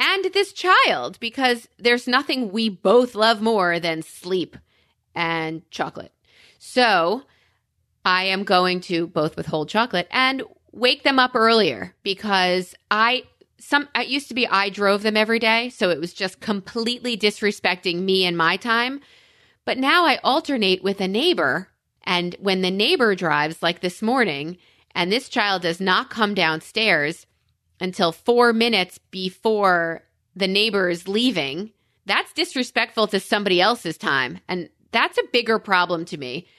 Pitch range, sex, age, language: 180-250 Hz, female, 30-49, English